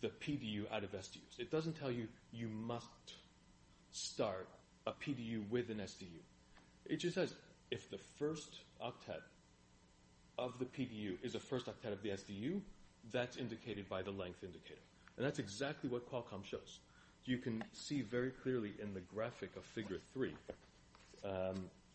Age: 30-49